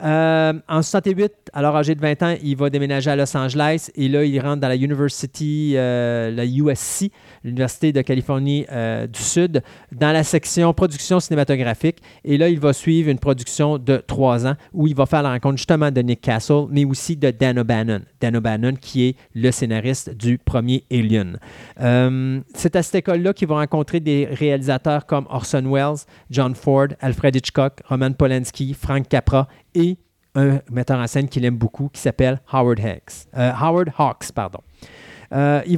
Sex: male